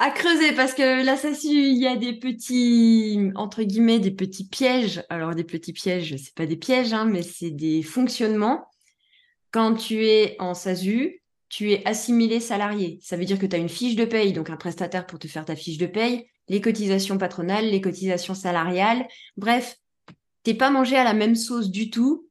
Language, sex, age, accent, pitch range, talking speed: French, female, 20-39, French, 180-230 Hz, 200 wpm